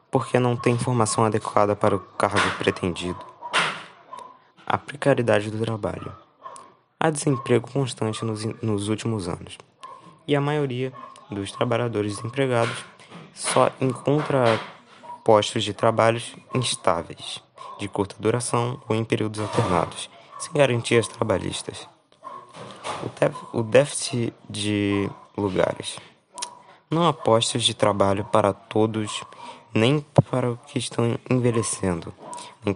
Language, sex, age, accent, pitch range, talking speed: Portuguese, male, 20-39, Brazilian, 105-135 Hz, 115 wpm